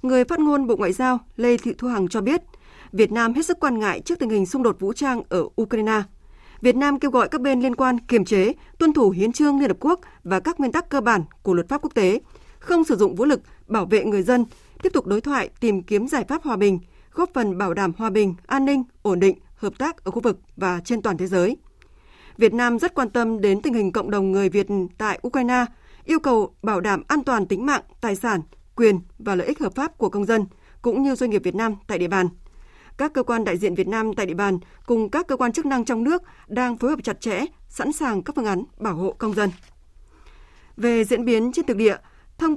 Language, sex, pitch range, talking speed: Vietnamese, female, 205-270 Hz, 245 wpm